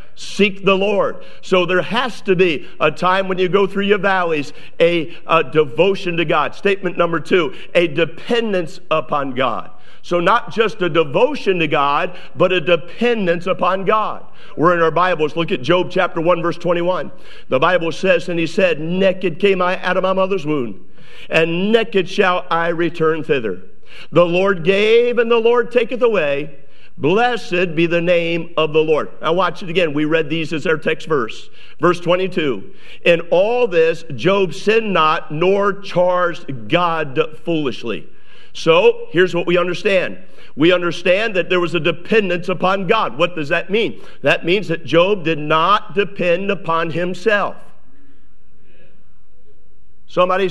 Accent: American